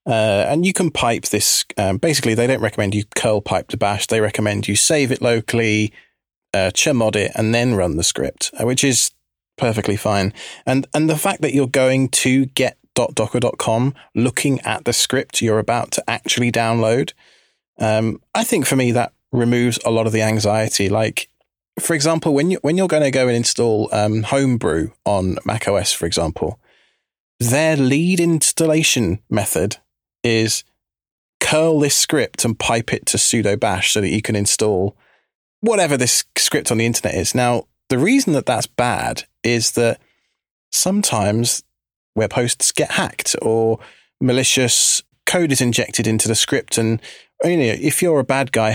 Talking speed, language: 170 wpm, English